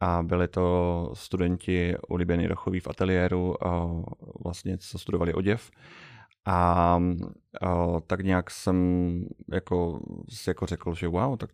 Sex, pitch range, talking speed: male, 90-110 Hz, 120 wpm